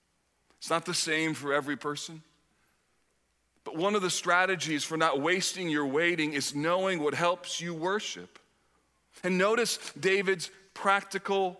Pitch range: 160-205 Hz